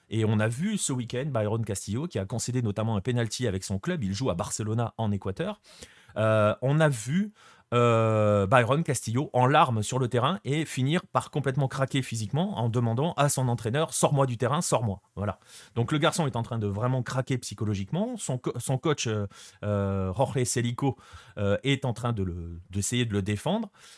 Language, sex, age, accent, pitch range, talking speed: French, male, 30-49, French, 105-140 Hz, 190 wpm